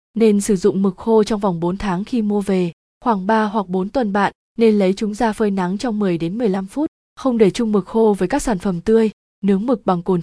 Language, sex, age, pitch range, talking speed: Vietnamese, female, 20-39, 190-230 Hz, 250 wpm